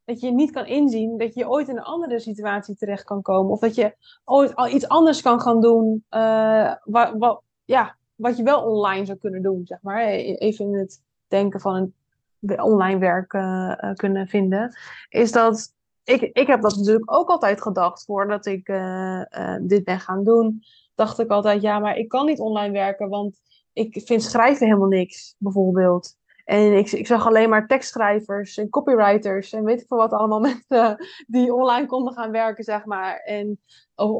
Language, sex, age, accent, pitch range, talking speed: Dutch, female, 20-39, Dutch, 200-235 Hz, 195 wpm